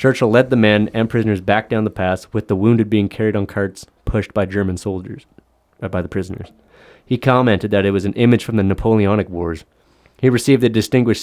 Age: 30-49